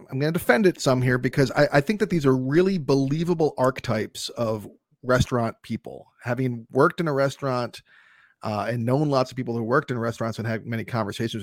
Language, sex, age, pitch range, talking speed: English, male, 30-49, 120-145 Hz, 205 wpm